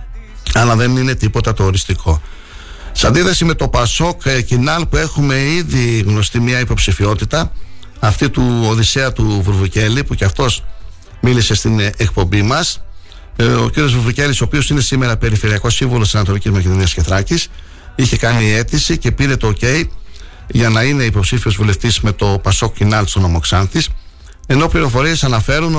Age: 60-79